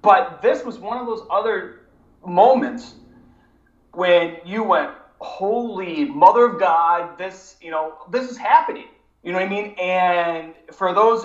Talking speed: 155 wpm